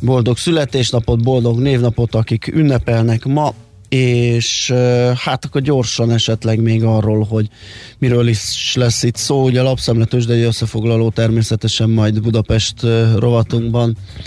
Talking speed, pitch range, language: 125 wpm, 105-120 Hz, Hungarian